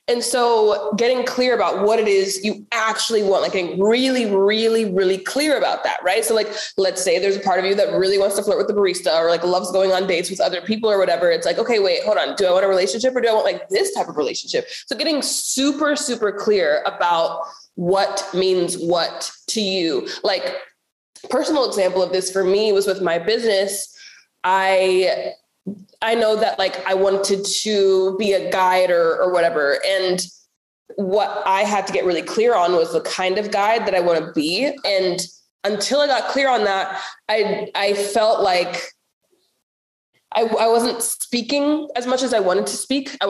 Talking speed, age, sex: 200 wpm, 20-39, female